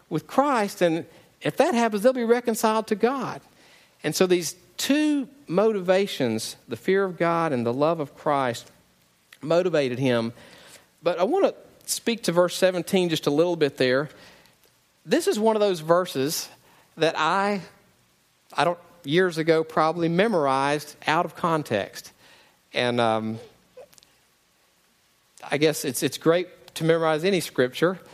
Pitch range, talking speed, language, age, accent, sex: 145-195 Hz, 145 wpm, English, 50-69, American, male